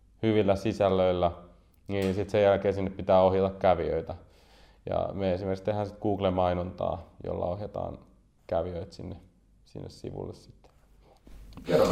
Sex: male